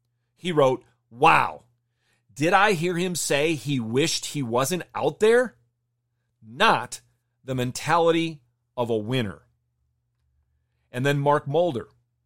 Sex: male